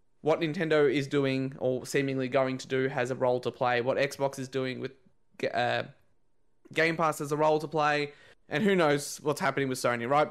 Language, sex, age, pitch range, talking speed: English, male, 20-39, 130-155 Hz, 205 wpm